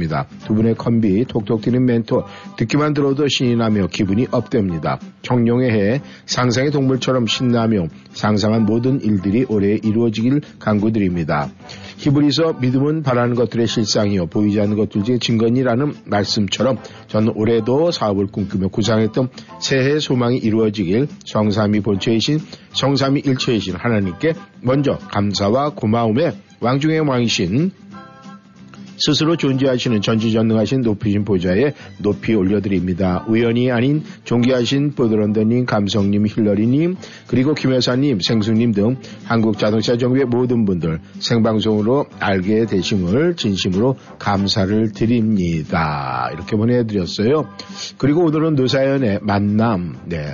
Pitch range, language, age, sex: 105-130 Hz, Korean, 50-69, male